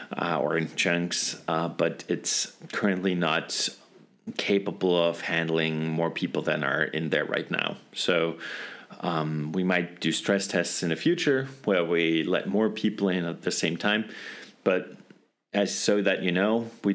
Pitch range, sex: 85-100 Hz, male